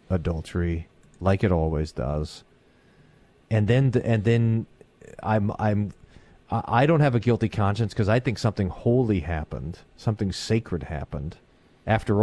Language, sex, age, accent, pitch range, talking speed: English, male, 40-59, American, 90-115 Hz, 130 wpm